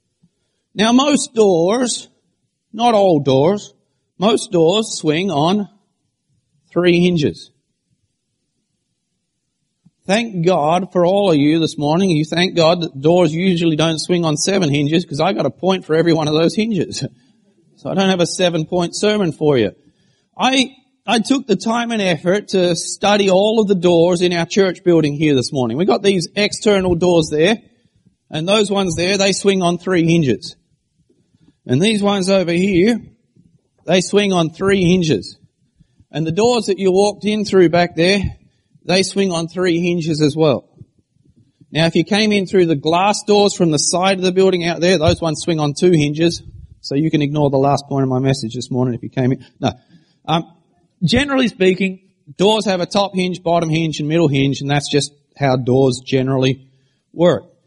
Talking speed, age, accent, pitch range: 180 wpm, 40-59, Australian, 155-195 Hz